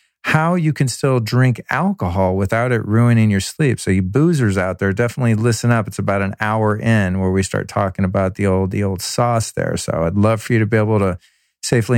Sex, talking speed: male, 225 wpm